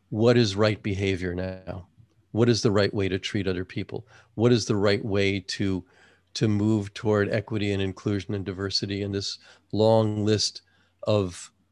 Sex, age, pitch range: male, 40-59, 100-125 Hz